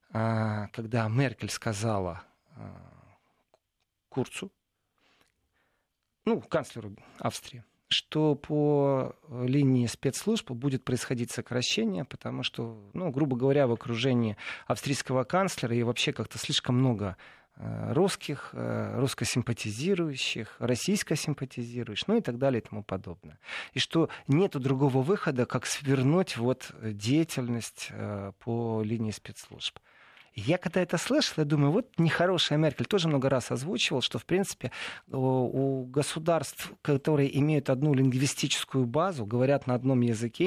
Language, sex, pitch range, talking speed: Russian, male, 120-155 Hz, 115 wpm